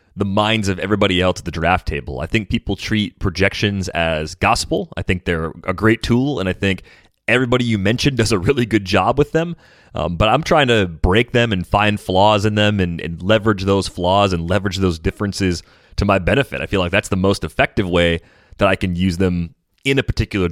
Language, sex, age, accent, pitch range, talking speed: English, male, 30-49, American, 90-110 Hz, 220 wpm